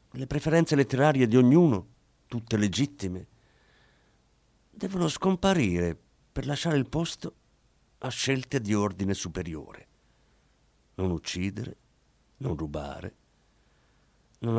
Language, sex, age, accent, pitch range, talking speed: Italian, male, 50-69, native, 100-150 Hz, 95 wpm